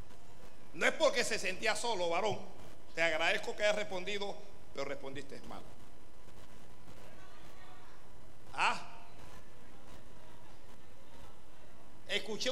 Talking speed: 80 wpm